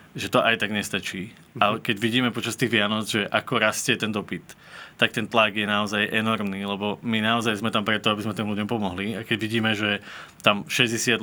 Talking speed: 210 wpm